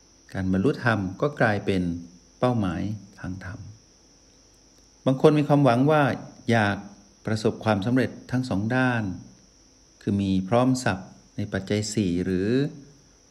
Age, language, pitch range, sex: 60-79, Thai, 95-125 Hz, male